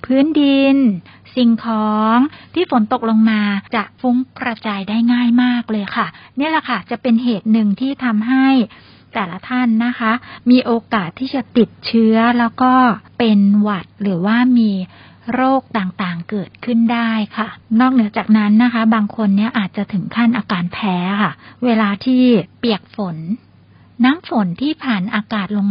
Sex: female